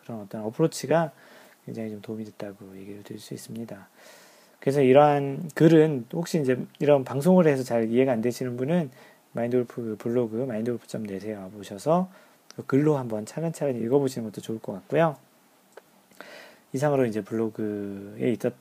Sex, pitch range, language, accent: male, 115-160 Hz, Korean, native